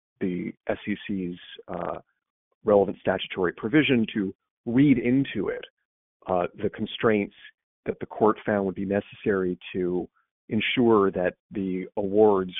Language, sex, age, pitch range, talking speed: English, male, 40-59, 95-120 Hz, 120 wpm